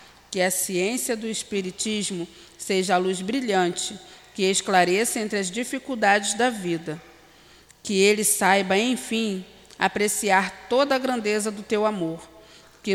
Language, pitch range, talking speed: Portuguese, 180-215 Hz, 130 wpm